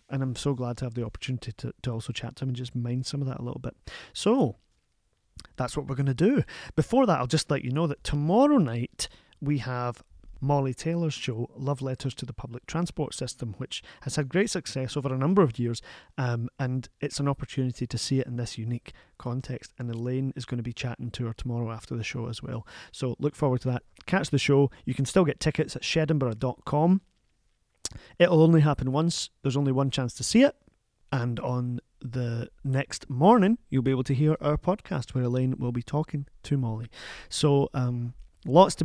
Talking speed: 215 wpm